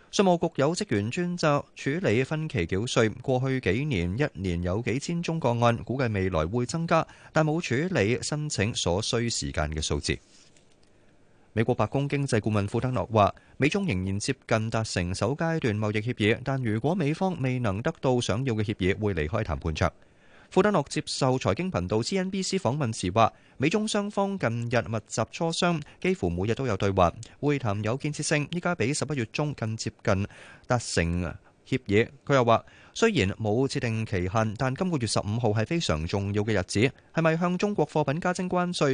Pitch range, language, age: 100-145 Hz, Chinese, 20-39